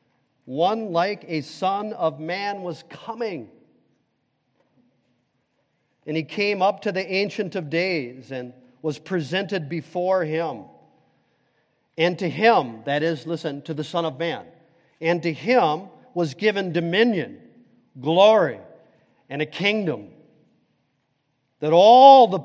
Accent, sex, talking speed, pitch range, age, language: American, male, 125 wpm, 140-190 Hz, 40-59, English